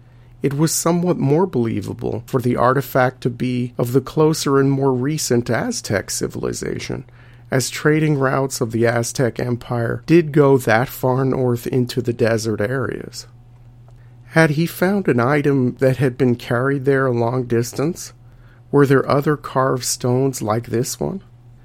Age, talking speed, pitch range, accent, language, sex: 50-69, 150 wpm, 120-135 Hz, American, English, male